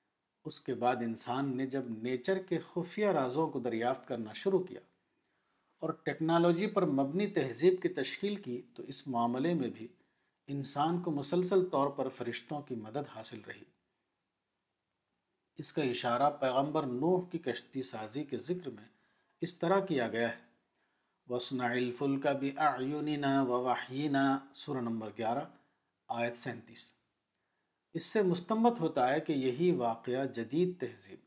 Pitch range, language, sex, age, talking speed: 125-170 Hz, Urdu, male, 50-69, 140 wpm